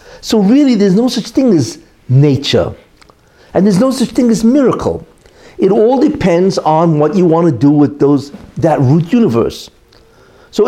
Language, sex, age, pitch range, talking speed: English, male, 60-79, 130-190 Hz, 170 wpm